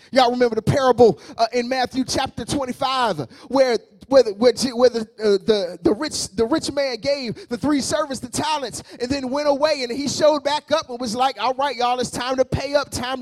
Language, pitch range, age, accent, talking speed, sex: English, 245-300 Hz, 30-49, American, 225 wpm, male